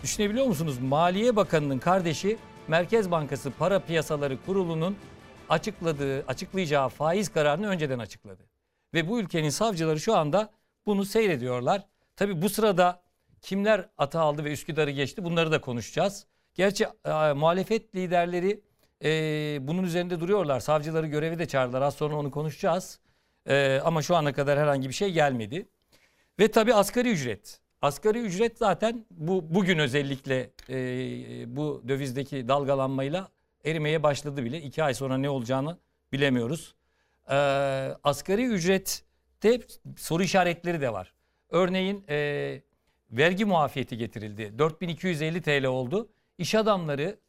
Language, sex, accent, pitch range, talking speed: Turkish, male, native, 140-190 Hz, 130 wpm